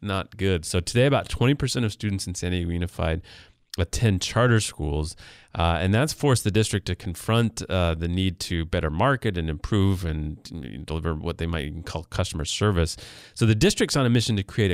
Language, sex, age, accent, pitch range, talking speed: English, male, 30-49, American, 90-110 Hz, 195 wpm